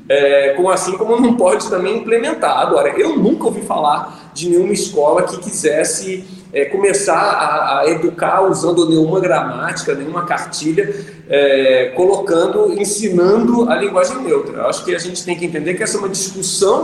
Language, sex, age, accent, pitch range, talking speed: Portuguese, male, 40-59, Brazilian, 170-250 Hz, 150 wpm